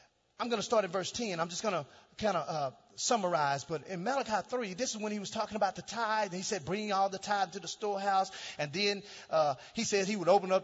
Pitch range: 200-330 Hz